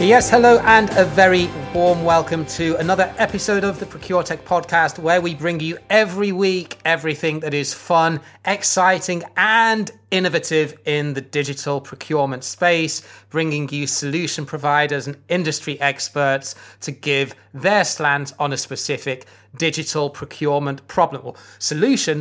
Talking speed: 140 wpm